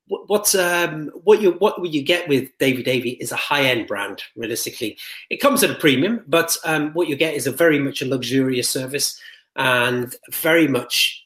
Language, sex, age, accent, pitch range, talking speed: English, male, 30-49, British, 130-170 Hz, 205 wpm